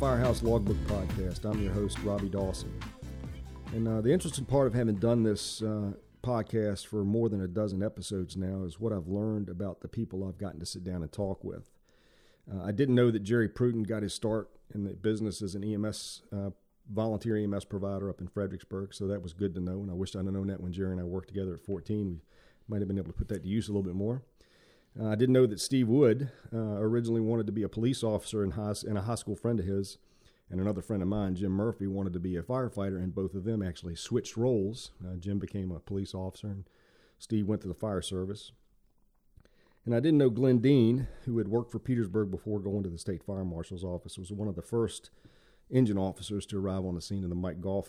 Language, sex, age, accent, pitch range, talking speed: English, male, 40-59, American, 95-110 Hz, 235 wpm